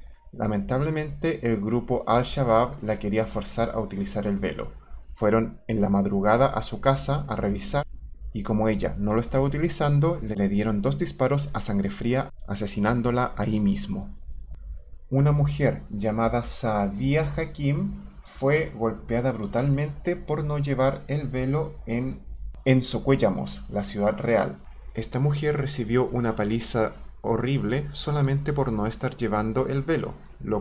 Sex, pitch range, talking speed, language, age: male, 110-150 Hz, 135 wpm, English, 20-39